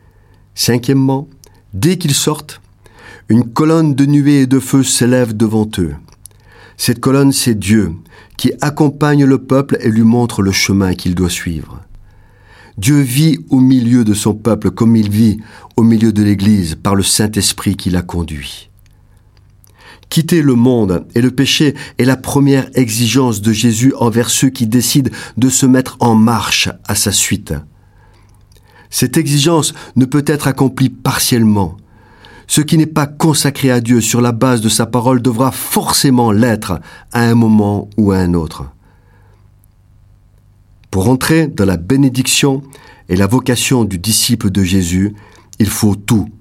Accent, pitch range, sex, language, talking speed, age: French, 100-130 Hz, male, French, 155 wpm, 50-69